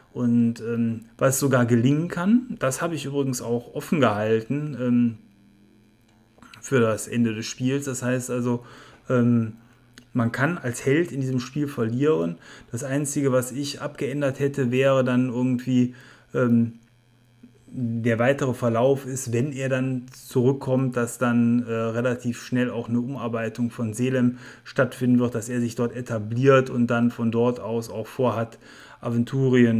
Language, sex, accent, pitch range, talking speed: German, male, German, 115-130 Hz, 150 wpm